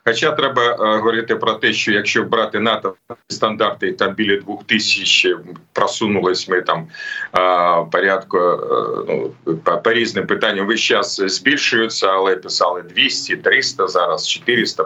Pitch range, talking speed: 110-140 Hz, 135 wpm